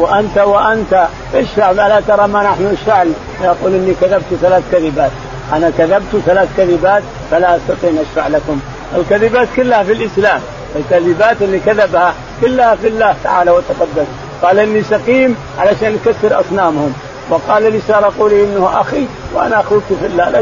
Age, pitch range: 50-69, 175-210 Hz